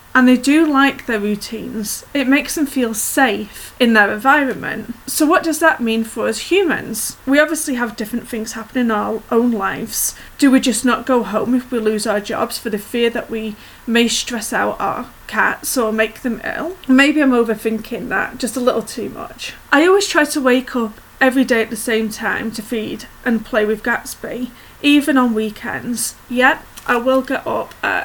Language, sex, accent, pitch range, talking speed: English, female, British, 220-265 Hz, 200 wpm